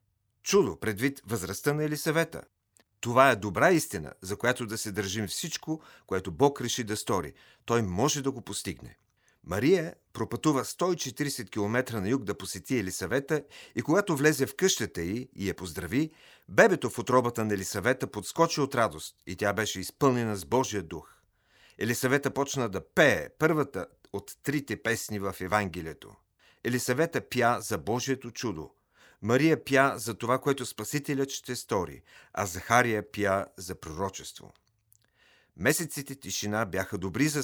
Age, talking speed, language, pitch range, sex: 40-59, 145 wpm, Bulgarian, 100-135 Hz, male